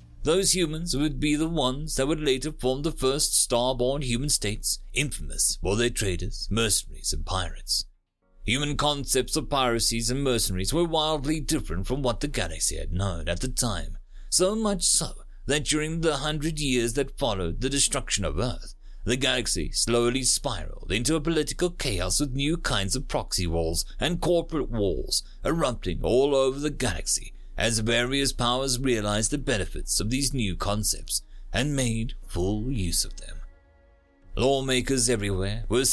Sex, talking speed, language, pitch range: male, 160 wpm, English, 95-145 Hz